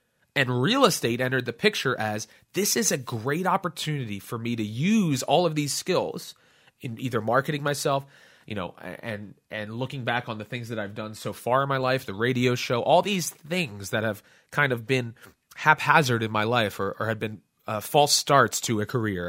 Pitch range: 110-145 Hz